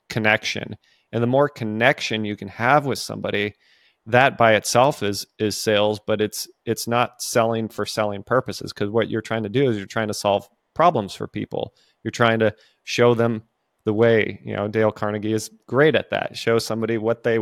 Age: 30-49